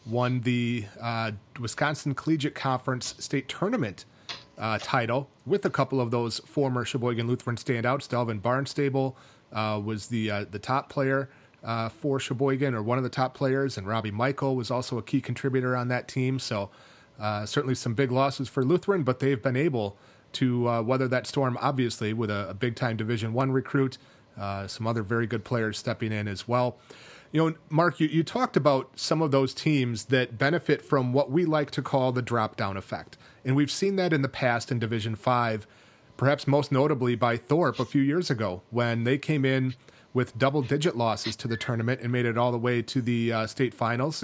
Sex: male